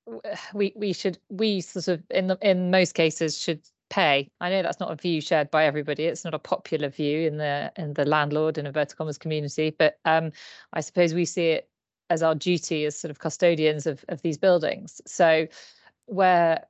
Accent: British